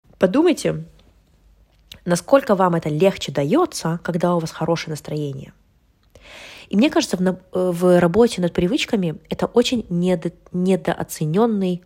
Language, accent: Russian, native